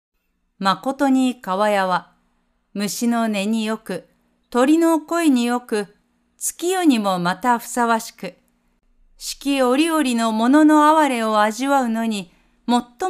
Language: Japanese